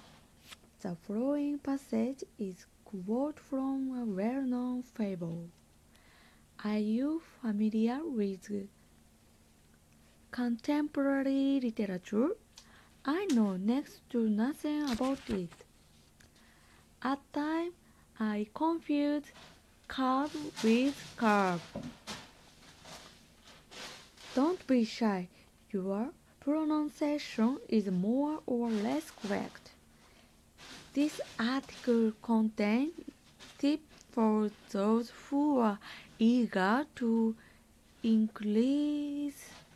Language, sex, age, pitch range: Japanese, female, 20-39, 200-275 Hz